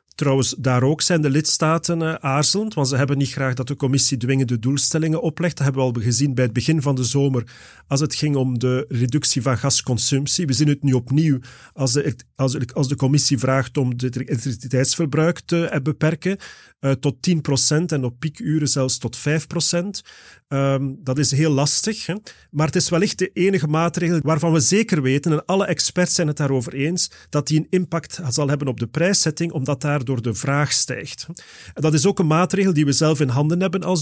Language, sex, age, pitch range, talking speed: Dutch, male, 40-59, 135-165 Hz, 195 wpm